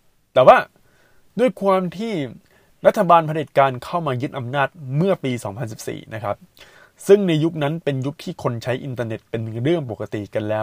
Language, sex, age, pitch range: Thai, male, 20-39, 120-175 Hz